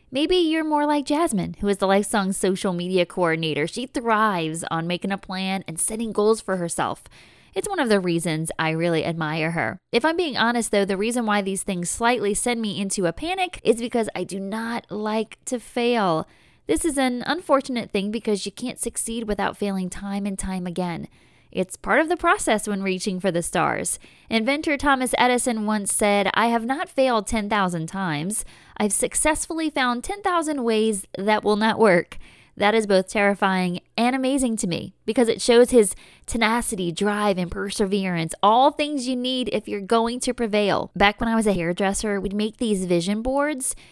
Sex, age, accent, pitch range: female, 20-39, American, 190-240 Hz